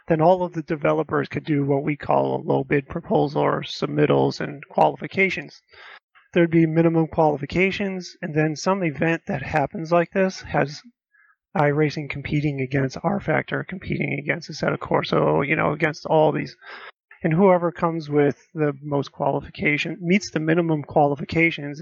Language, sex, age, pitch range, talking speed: English, male, 30-49, 145-175 Hz, 160 wpm